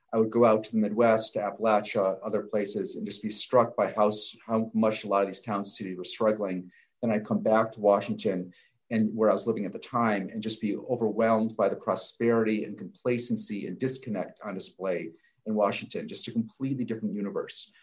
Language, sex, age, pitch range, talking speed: English, male, 40-59, 105-115 Hz, 205 wpm